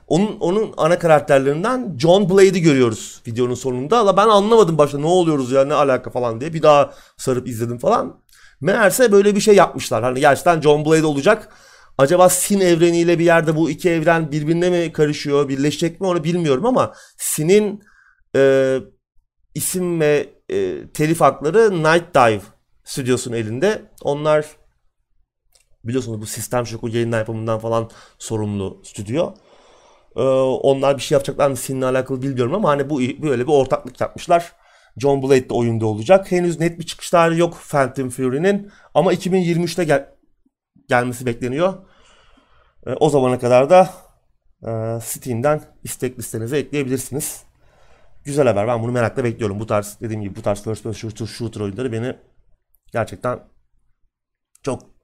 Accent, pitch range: native, 120-170 Hz